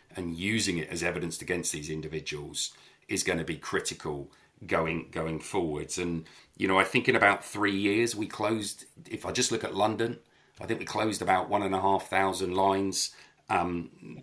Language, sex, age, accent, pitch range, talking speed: English, male, 40-59, British, 85-100 Hz, 190 wpm